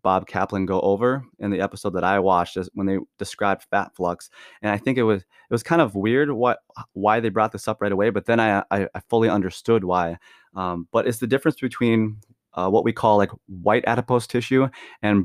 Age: 30-49